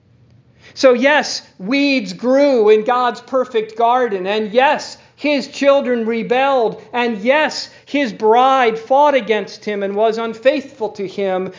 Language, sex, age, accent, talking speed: English, male, 40-59, American, 130 wpm